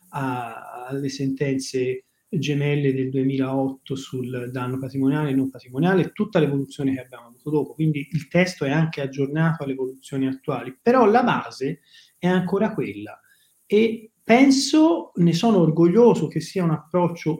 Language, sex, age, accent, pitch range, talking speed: Italian, male, 30-49, native, 135-170 Hz, 140 wpm